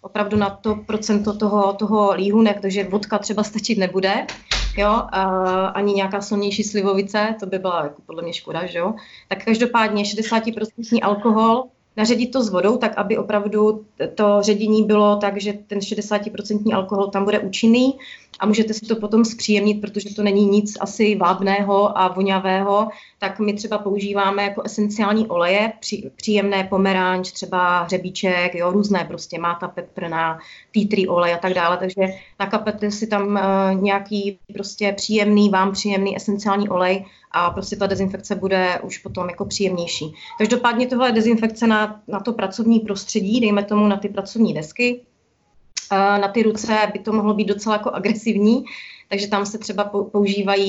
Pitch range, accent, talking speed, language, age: 190-210 Hz, native, 155 wpm, Czech, 30-49